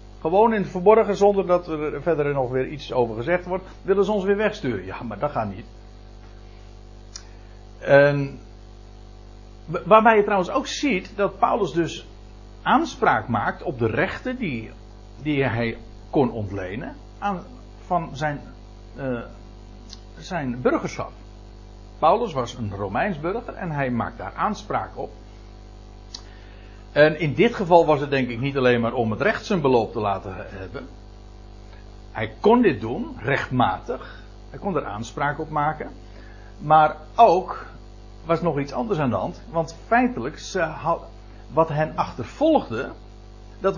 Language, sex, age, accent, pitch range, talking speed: Dutch, male, 60-79, Dutch, 105-170 Hz, 140 wpm